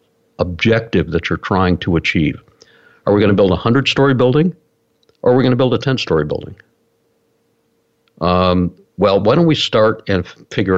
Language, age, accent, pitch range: English, 60-79, American, 95-135 Hz